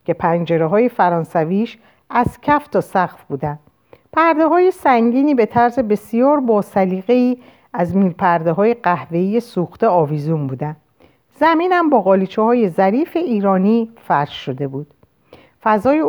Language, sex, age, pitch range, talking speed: Persian, female, 50-69, 170-245 Hz, 115 wpm